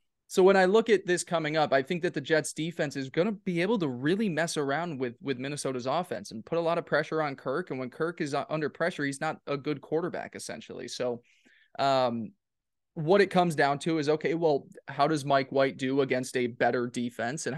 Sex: male